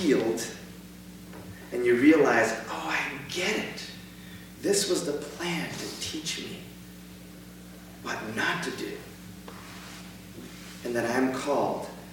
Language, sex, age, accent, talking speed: English, male, 30-49, American, 115 wpm